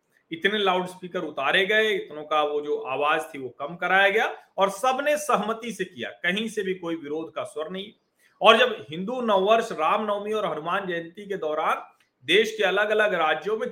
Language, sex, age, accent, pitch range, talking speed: Hindi, male, 40-59, native, 160-260 Hz, 190 wpm